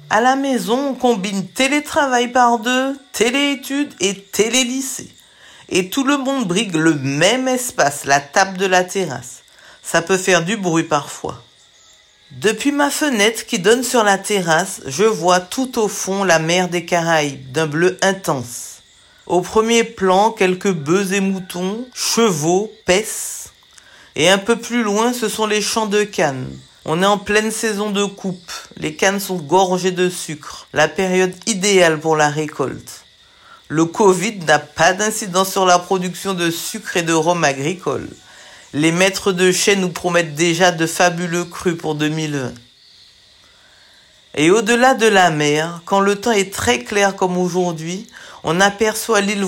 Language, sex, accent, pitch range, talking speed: French, female, French, 170-220 Hz, 160 wpm